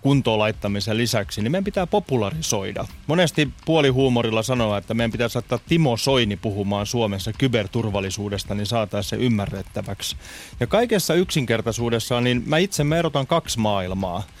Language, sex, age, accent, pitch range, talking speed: Finnish, male, 30-49, native, 110-145 Hz, 140 wpm